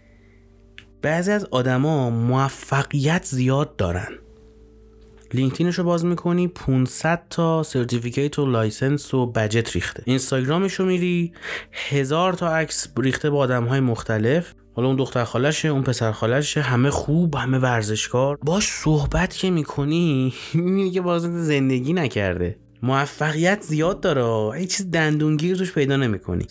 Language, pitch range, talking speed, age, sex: Persian, 120-165 Hz, 120 wpm, 30-49, male